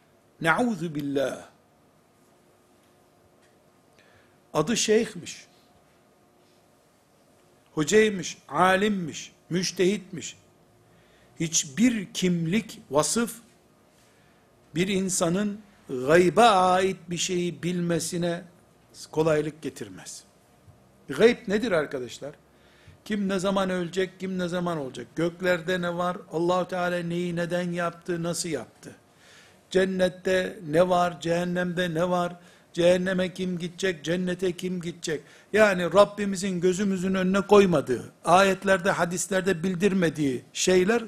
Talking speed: 90 wpm